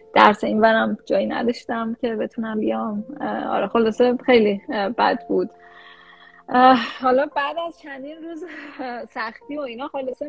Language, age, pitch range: Persian, 10-29, 220-285 Hz